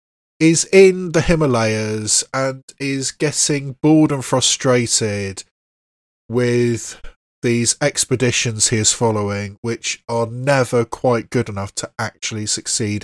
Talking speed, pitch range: 115 wpm, 105-150 Hz